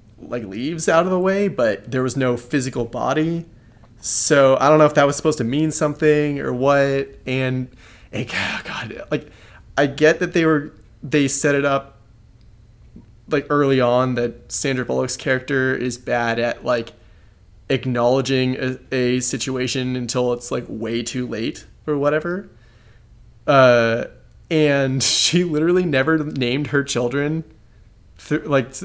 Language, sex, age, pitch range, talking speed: English, male, 20-39, 115-145 Hz, 145 wpm